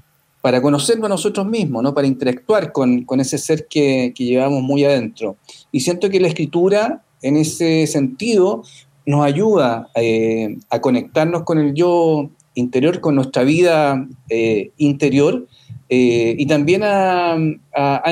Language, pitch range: Spanish, 130-165 Hz